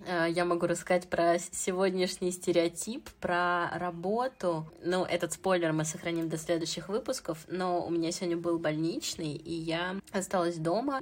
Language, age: Russian, 20-39